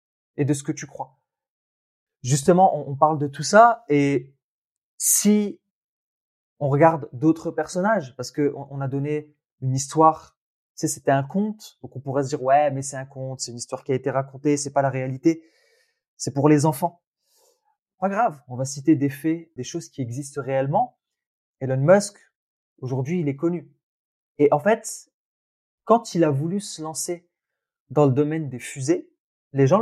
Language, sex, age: French, male, 20-39